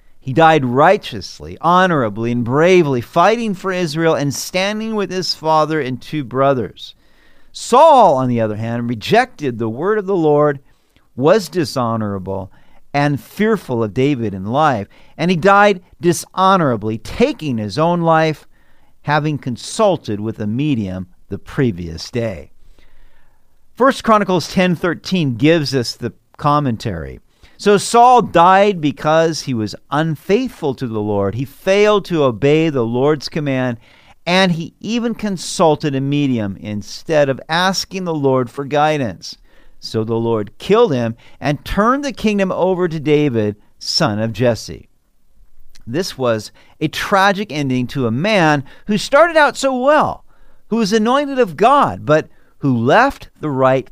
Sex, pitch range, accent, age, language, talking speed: male, 115-185 Hz, American, 50-69, English, 140 wpm